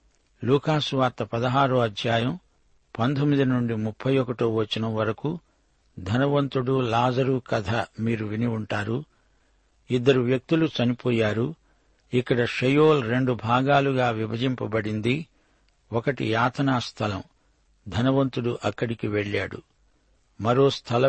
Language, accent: Telugu, native